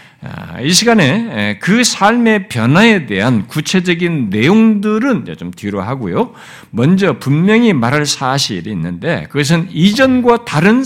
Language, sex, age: Korean, male, 60-79